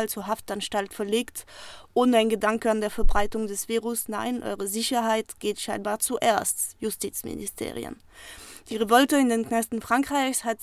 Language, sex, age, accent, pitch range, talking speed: German, female, 20-39, German, 215-245 Hz, 140 wpm